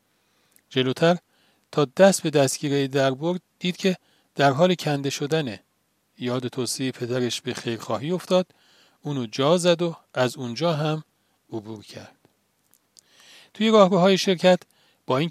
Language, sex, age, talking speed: Persian, male, 40-59, 130 wpm